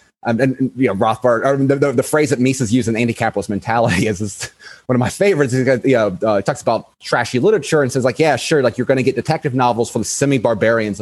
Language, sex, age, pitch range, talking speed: English, male, 30-49, 125-165 Hz, 245 wpm